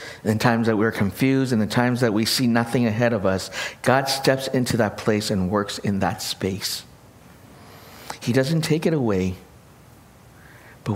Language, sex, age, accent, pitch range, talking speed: English, male, 60-79, American, 90-120 Hz, 170 wpm